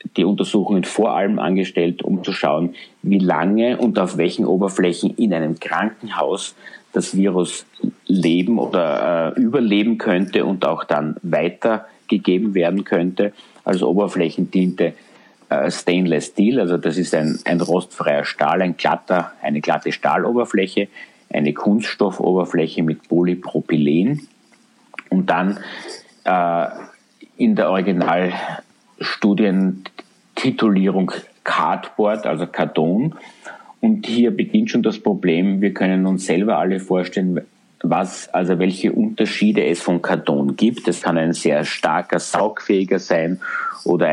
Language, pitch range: German, 85-100 Hz